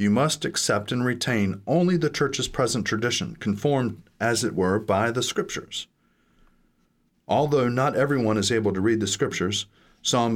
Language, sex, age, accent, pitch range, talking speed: English, male, 40-59, American, 105-135 Hz, 155 wpm